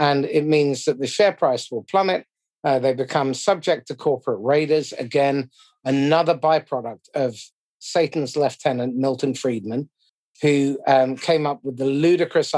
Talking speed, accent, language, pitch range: 150 wpm, British, English, 130-165 Hz